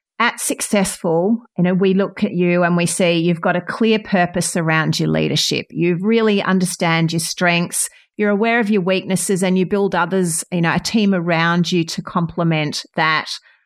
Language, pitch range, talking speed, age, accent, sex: English, 170-200 Hz, 185 wpm, 40-59, Australian, female